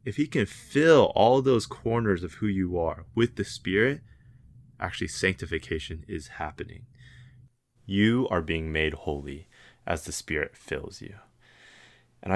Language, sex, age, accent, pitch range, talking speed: English, male, 20-39, American, 85-120 Hz, 140 wpm